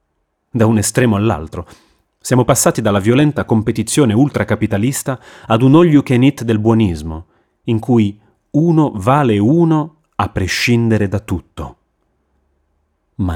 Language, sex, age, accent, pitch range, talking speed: Italian, male, 30-49, native, 85-130 Hz, 110 wpm